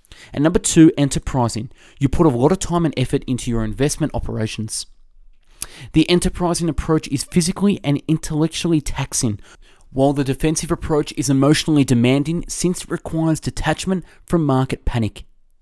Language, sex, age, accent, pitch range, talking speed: English, male, 20-39, Australian, 125-165 Hz, 145 wpm